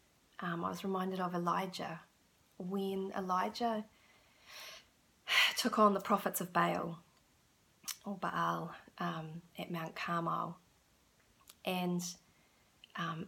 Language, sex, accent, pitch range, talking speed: English, female, Australian, 165-200 Hz, 100 wpm